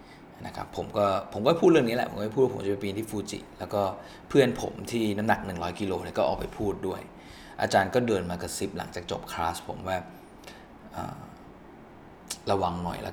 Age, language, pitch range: 20-39, Thai, 90-105 Hz